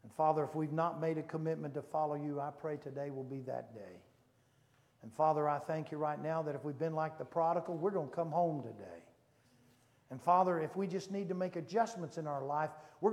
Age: 60-79